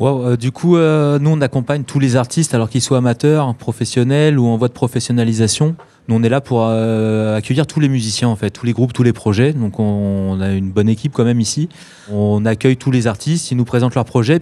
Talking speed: 240 wpm